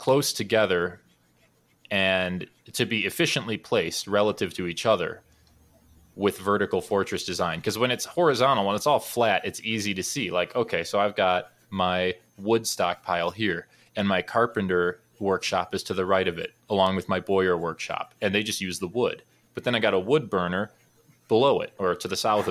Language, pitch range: English, 90-105 Hz